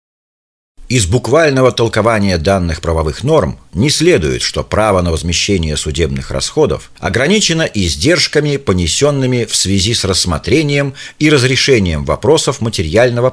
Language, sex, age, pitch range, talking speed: Russian, male, 50-69, 95-135 Hz, 115 wpm